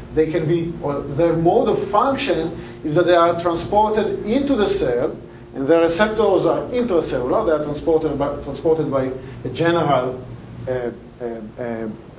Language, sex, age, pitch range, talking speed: English, male, 40-59, 130-165 Hz, 155 wpm